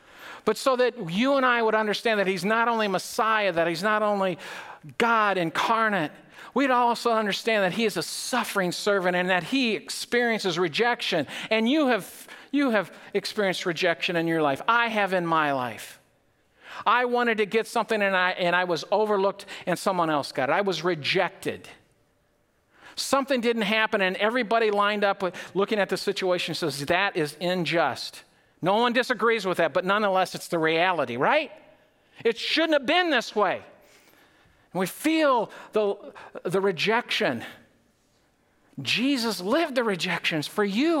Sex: male